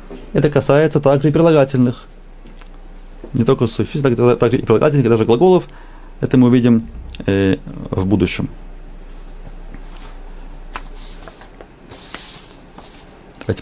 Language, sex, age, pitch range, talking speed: Russian, male, 30-49, 100-140 Hz, 90 wpm